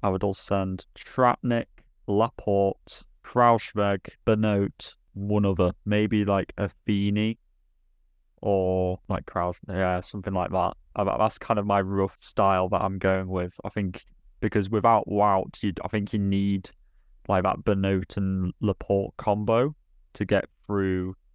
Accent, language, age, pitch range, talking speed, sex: British, English, 20-39, 95-105 Hz, 140 wpm, male